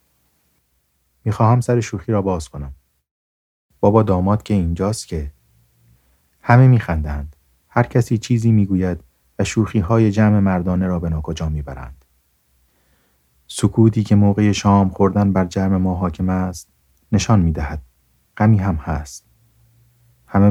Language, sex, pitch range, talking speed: Persian, male, 70-105 Hz, 125 wpm